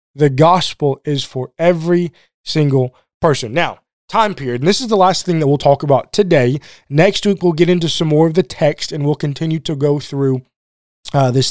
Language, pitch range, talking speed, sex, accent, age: English, 140-185 Hz, 205 wpm, male, American, 20-39